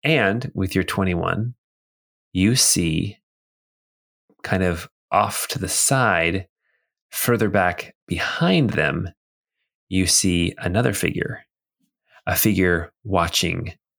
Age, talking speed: 20-39, 100 wpm